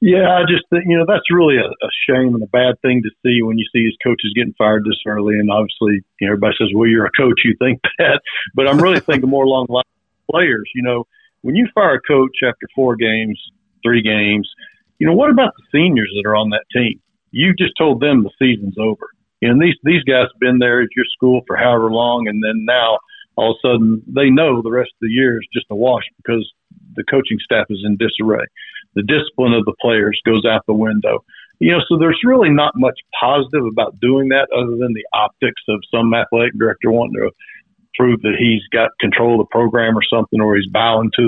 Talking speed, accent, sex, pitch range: 235 wpm, American, male, 110-135 Hz